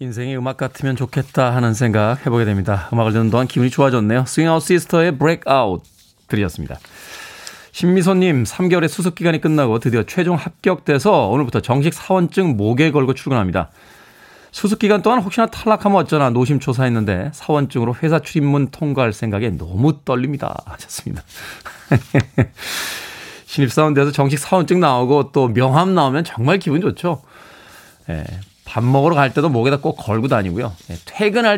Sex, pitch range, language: male, 115-175 Hz, Korean